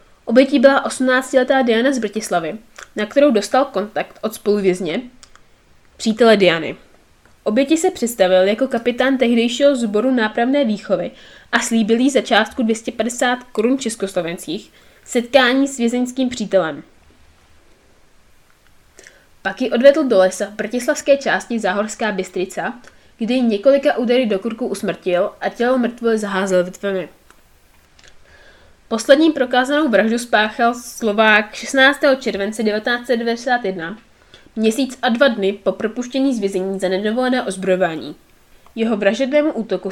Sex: female